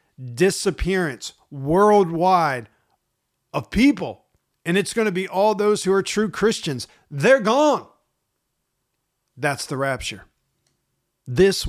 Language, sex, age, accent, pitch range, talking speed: English, male, 50-69, American, 125-165 Hz, 110 wpm